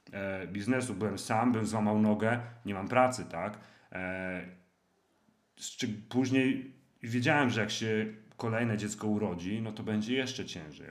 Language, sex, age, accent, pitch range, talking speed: Polish, male, 40-59, native, 95-120 Hz, 125 wpm